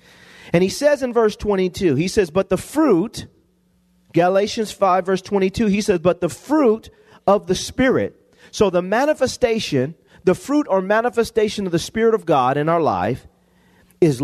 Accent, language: American, English